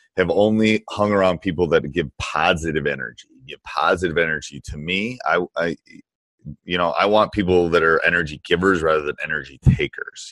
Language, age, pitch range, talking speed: English, 30-49, 75-95 Hz, 170 wpm